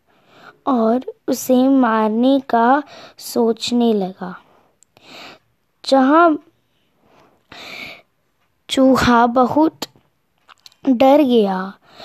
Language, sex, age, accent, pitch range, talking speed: Hindi, female, 20-39, native, 225-275 Hz, 55 wpm